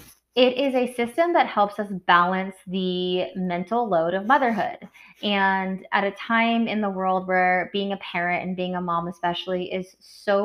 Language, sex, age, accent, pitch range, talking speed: English, female, 20-39, American, 180-210 Hz, 180 wpm